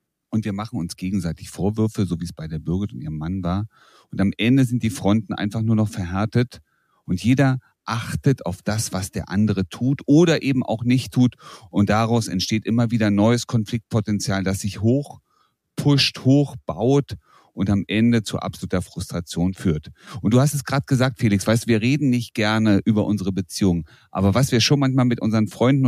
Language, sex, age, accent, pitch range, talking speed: German, male, 40-59, German, 95-125 Hz, 190 wpm